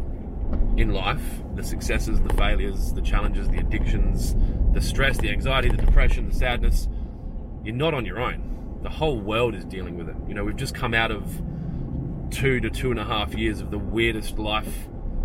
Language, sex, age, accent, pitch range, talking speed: English, male, 20-39, Australian, 90-125 Hz, 190 wpm